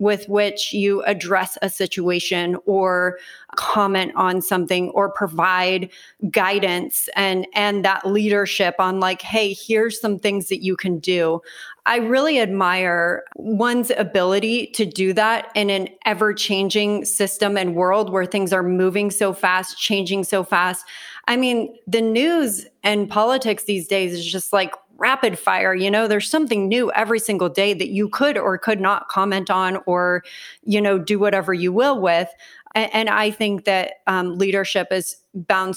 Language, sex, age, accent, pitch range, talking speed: English, female, 30-49, American, 190-220 Hz, 160 wpm